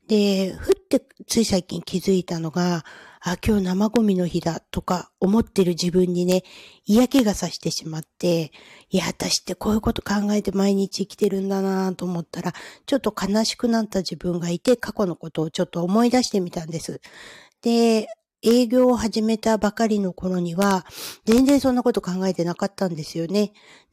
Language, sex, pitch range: Japanese, female, 175-225 Hz